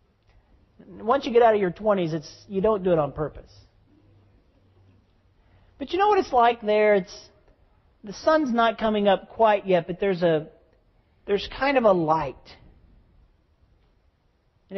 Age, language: 40-59, English